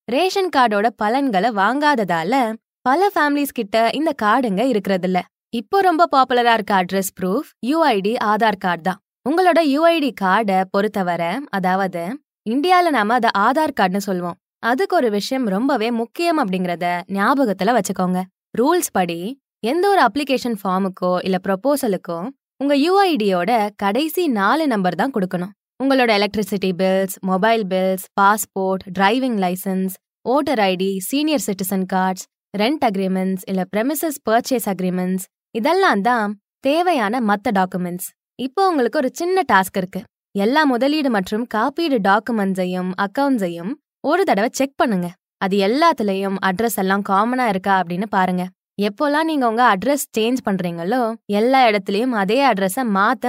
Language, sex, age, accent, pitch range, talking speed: Tamil, female, 20-39, native, 190-270 Hz, 125 wpm